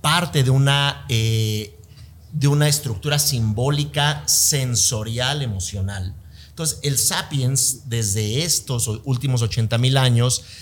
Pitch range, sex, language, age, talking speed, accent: 110-140 Hz, male, Spanish, 50-69, 100 wpm, Mexican